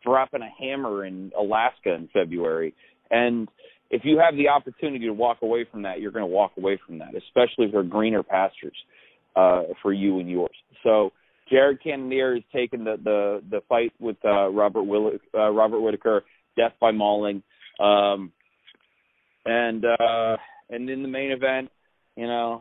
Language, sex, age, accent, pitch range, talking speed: English, male, 30-49, American, 105-125 Hz, 165 wpm